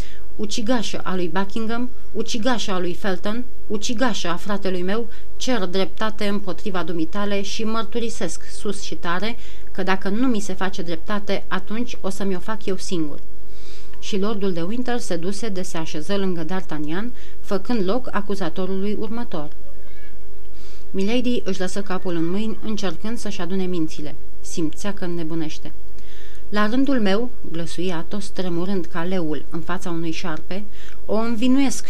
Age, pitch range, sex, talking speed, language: 30-49, 175-210 Hz, female, 145 wpm, Romanian